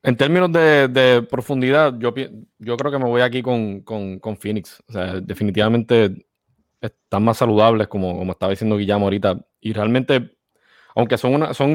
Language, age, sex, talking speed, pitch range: English, 20-39, male, 175 wpm, 105-125 Hz